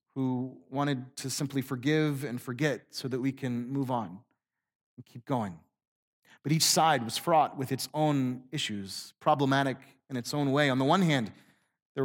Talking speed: 175 wpm